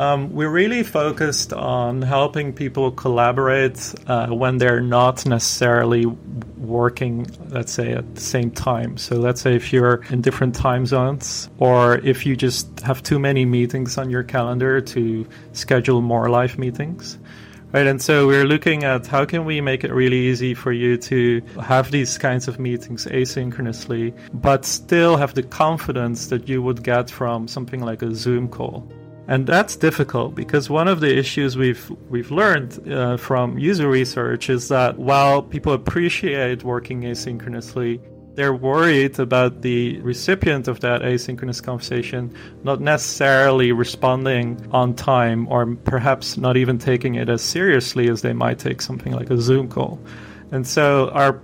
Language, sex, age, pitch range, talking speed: English, male, 30-49, 120-135 Hz, 160 wpm